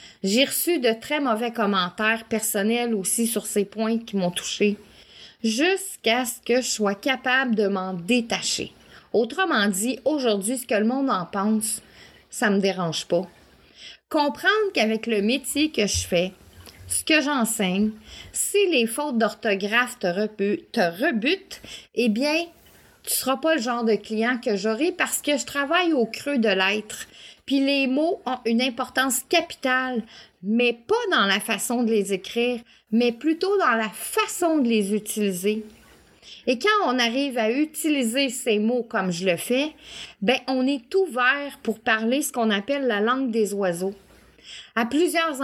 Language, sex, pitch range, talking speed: French, female, 210-265 Hz, 160 wpm